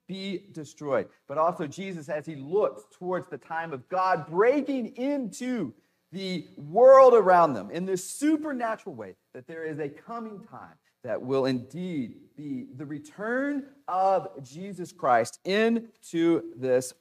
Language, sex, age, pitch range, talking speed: English, male, 40-59, 165-230 Hz, 140 wpm